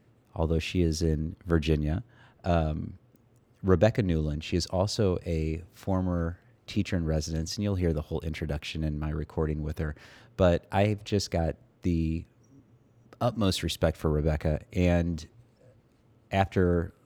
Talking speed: 125 wpm